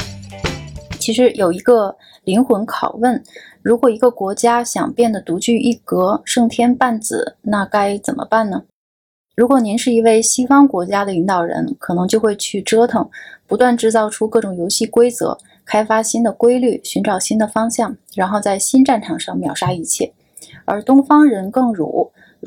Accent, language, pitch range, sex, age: native, Chinese, 195-245 Hz, female, 20-39